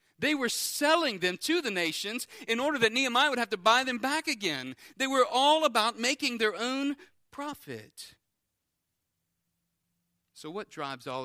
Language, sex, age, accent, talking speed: English, male, 40-59, American, 160 wpm